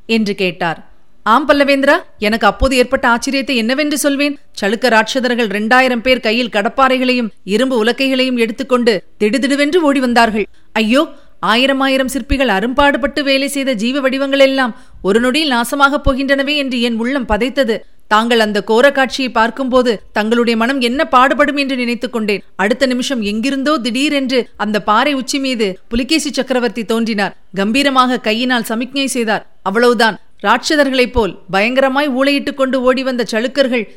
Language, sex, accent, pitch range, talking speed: Tamil, female, native, 225-270 Hz, 130 wpm